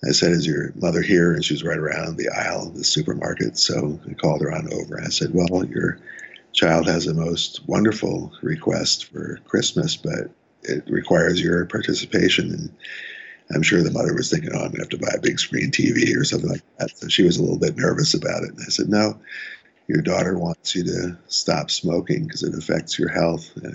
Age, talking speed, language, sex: 50-69, 220 wpm, English, male